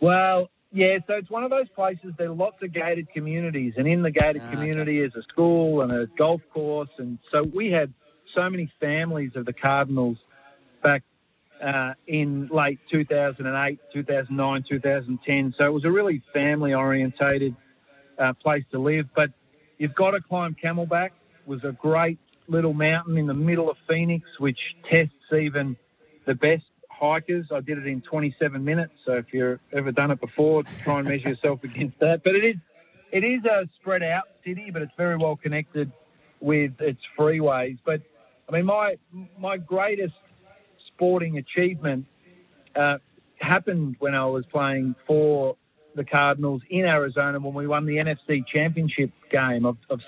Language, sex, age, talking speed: English, male, 40-59, 170 wpm